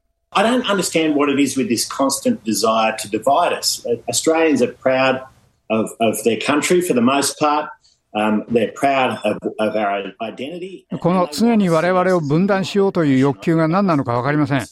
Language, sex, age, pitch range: Japanese, male, 60-79, 130-170 Hz